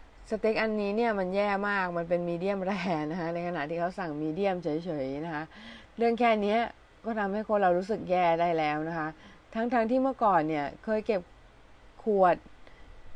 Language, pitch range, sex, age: Thai, 165-215 Hz, female, 20-39